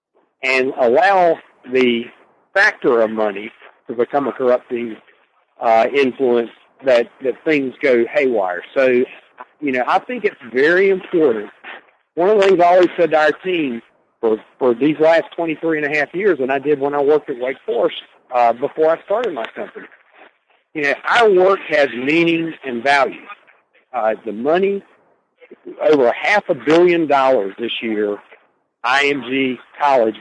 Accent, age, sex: American, 50-69, male